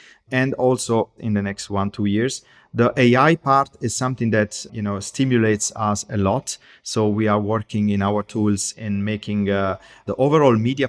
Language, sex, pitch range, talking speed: English, male, 105-125 Hz, 180 wpm